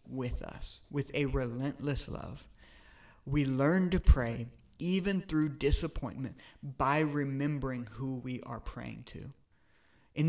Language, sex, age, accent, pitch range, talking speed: English, male, 30-49, American, 130-145 Hz, 120 wpm